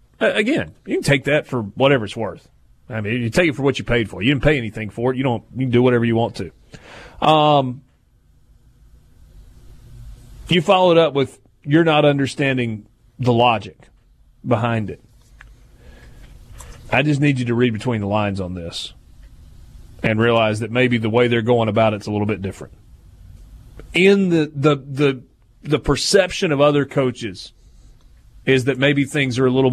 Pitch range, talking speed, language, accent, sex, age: 110-145 Hz, 175 wpm, English, American, male, 30-49